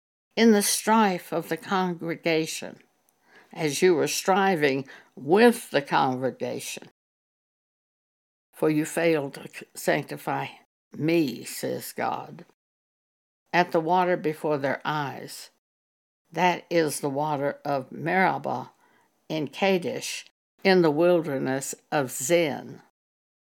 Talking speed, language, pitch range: 100 wpm, English, 140-190 Hz